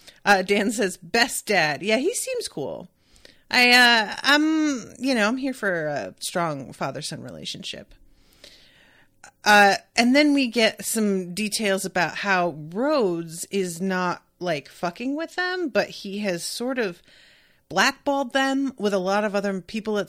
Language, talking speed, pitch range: English, 150 wpm, 175-240 Hz